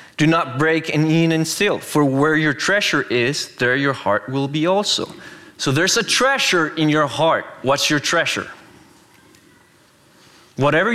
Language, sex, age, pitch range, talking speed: English, male, 20-39, 140-180 Hz, 160 wpm